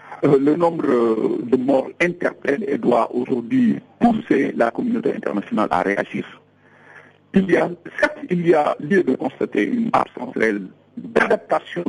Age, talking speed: 60-79, 145 wpm